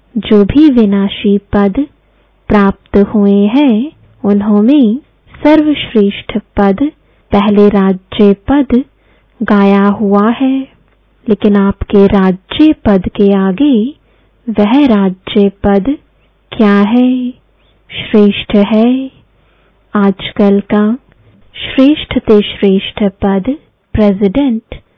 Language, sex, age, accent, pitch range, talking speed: English, female, 20-39, Indian, 200-255 Hz, 90 wpm